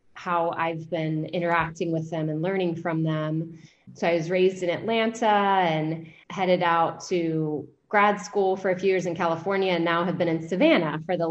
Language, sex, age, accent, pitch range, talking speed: English, female, 20-39, American, 165-195 Hz, 190 wpm